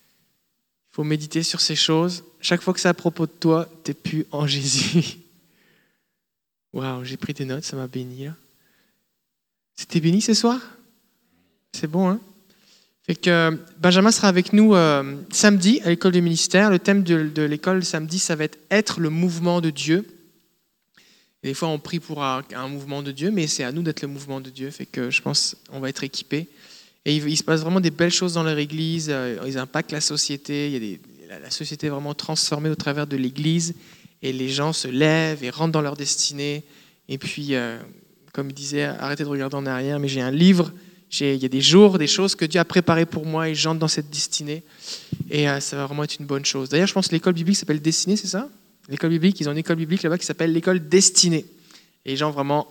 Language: French